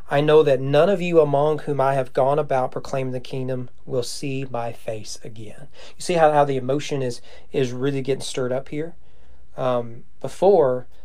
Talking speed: 190 wpm